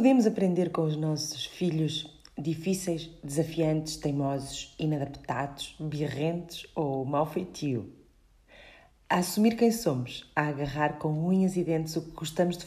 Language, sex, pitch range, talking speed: Portuguese, female, 155-185 Hz, 135 wpm